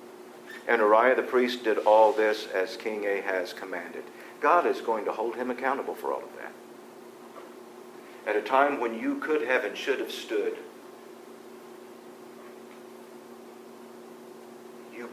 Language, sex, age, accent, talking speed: English, male, 50-69, American, 135 wpm